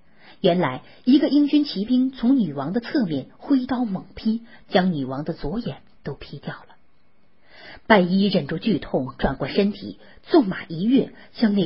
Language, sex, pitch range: Chinese, female, 170-250 Hz